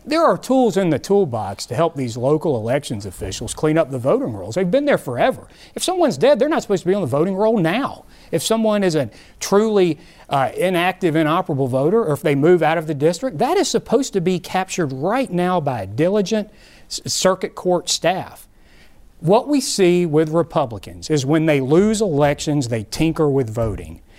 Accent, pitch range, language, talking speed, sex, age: American, 135-195 Hz, English, 195 wpm, male, 40-59